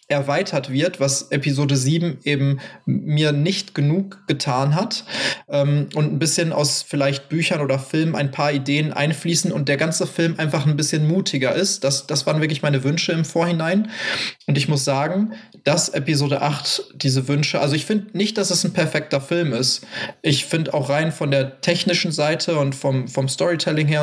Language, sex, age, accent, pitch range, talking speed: German, male, 20-39, German, 140-180 Hz, 180 wpm